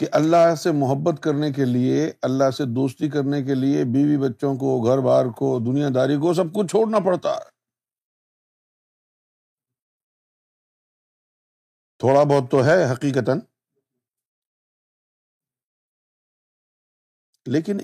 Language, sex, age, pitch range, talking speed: Urdu, male, 50-69, 120-155 Hz, 110 wpm